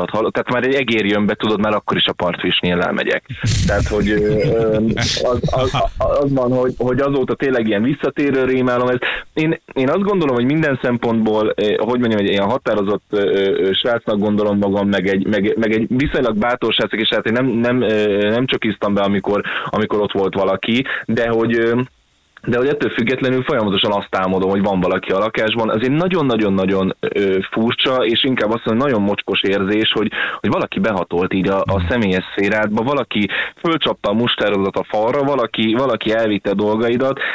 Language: Hungarian